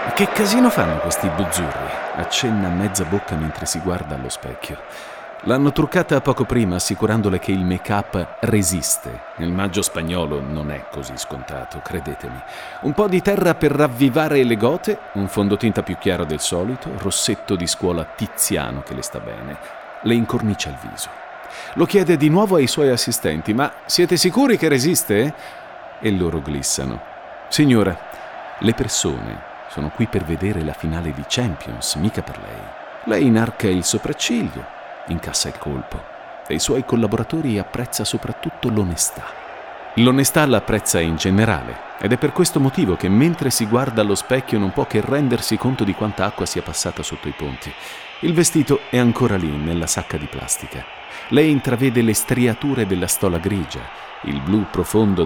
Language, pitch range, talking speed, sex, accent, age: Italian, 90-135 Hz, 160 wpm, male, native, 40-59